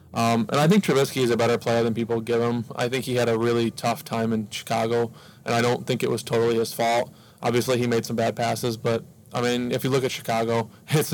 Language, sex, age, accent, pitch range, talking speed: English, male, 20-39, American, 115-130 Hz, 255 wpm